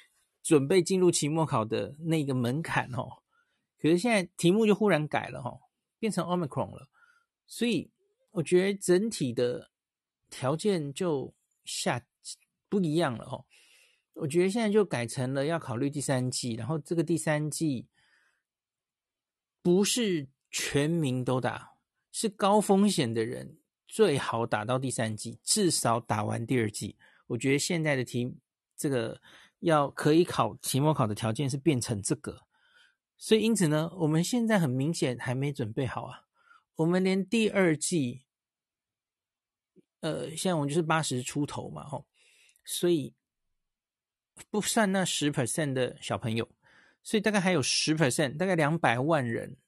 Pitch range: 130-185 Hz